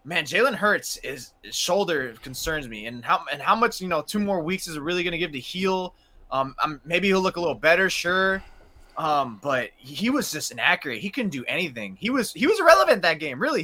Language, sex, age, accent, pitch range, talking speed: English, male, 20-39, American, 165-225 Hz, 235 wpm